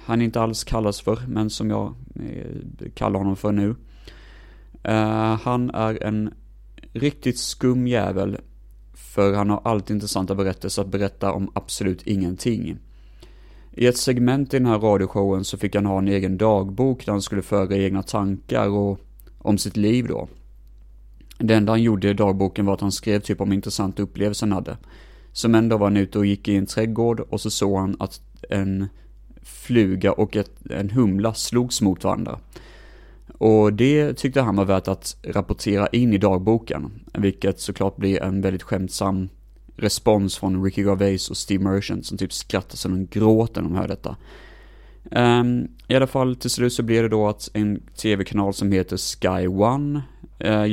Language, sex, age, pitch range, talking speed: Swedish, male, 30-49, 95-115 Hz, 175 wpm